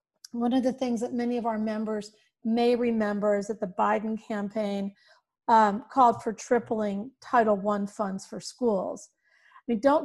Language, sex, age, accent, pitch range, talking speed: English, female, 40-59, American, 215-265 Hz, 160 wpm